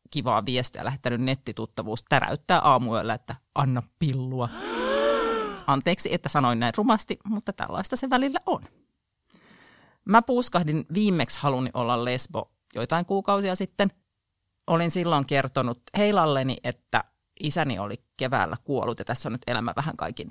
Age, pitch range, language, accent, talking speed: 30-49, 125-190 Hz, Finnish, native, 130 wpm